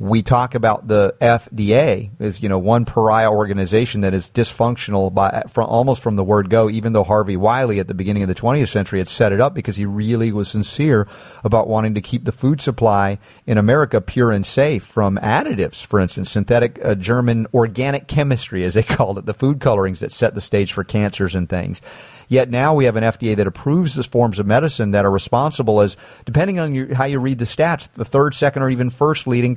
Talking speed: 215 wpm